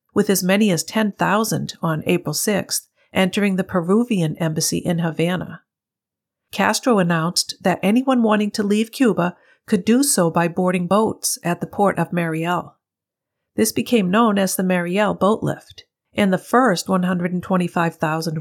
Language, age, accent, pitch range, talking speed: English, 50-69, American, 175-210 Hz, 145 wpm